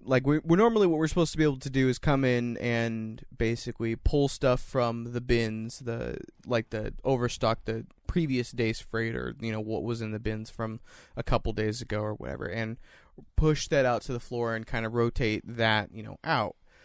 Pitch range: 110-130 Hz